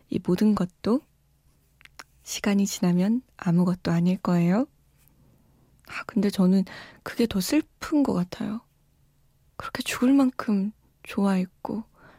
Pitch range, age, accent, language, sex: 190-240 Hz, 20-39, native, Korean, female